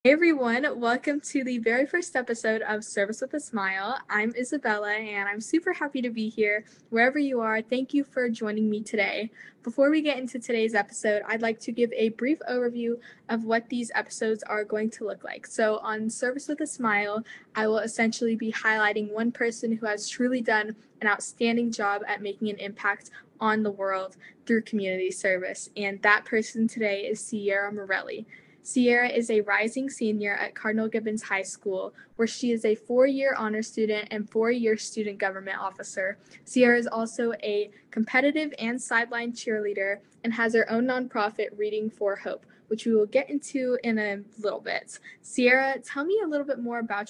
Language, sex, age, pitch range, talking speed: English, female, 10-29, 210-245 Hz, 185 wpm